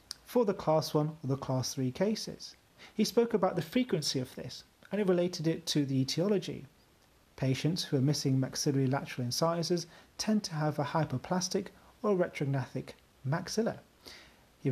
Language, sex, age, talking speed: English, male, 40-59, 160 wpm